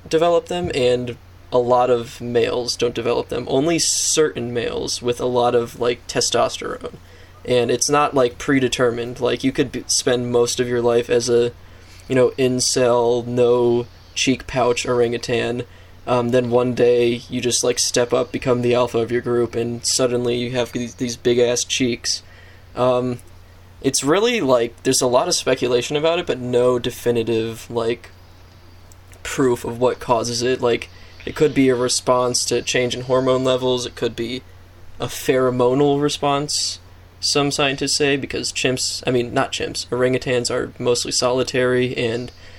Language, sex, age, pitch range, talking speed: English, male, 20-39, 115-125 Hz, 160 wpm